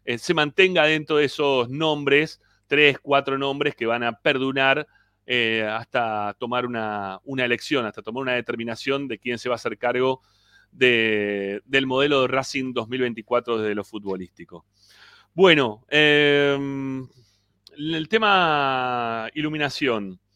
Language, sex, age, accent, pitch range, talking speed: Spanish, male, 30-49, Argentinian, 115-145 Hz, 130 wpm